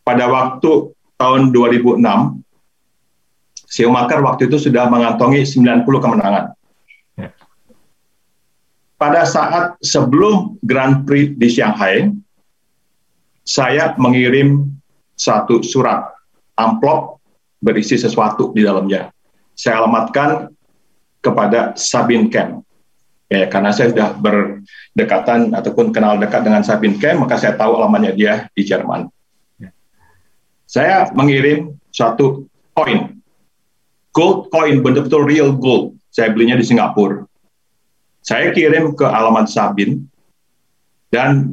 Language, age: Indonesian, 40-59